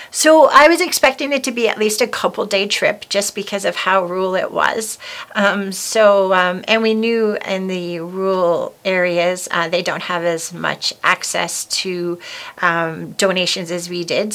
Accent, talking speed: American, 180 wpm